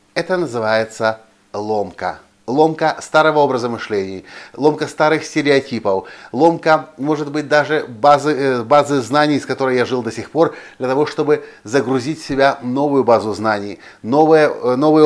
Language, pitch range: Russian, 115-150 Hz